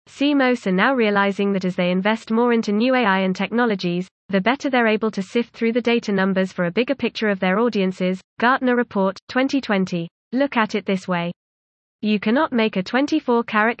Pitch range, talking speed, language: 190-240 Hz, 190 wpm, English